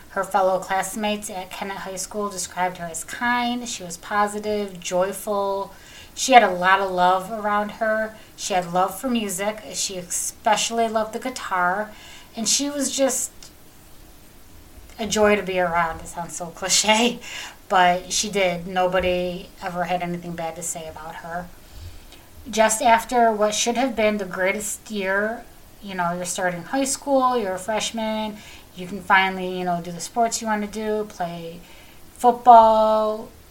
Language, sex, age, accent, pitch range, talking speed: English, female, 30-49, American, 180-220 Hz, 160 wpm